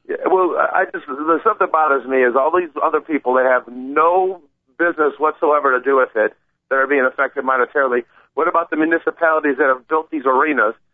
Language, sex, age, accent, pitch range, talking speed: English, male, 50-69, American, 140-185 Hz, 195 wpm